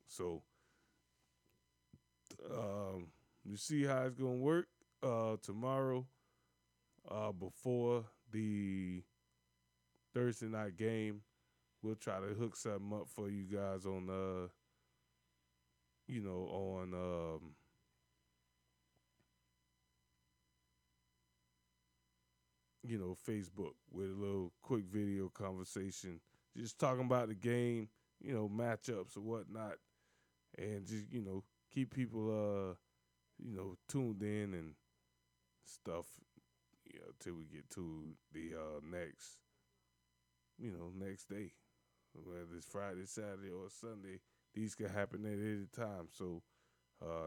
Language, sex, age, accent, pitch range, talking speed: English, male, 20-39, American, 65-110 Hz, 115 wpm